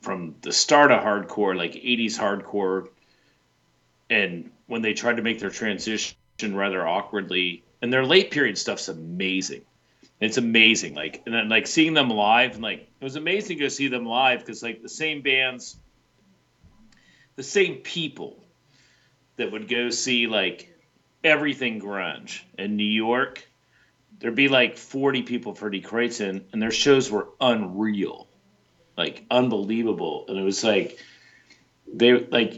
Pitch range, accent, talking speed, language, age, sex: 105-130 Hz, American, 150 wpm, English, 40-59, male